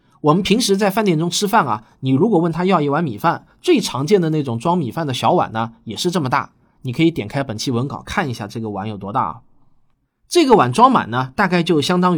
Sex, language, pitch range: male, Chinese, 130-205 Hz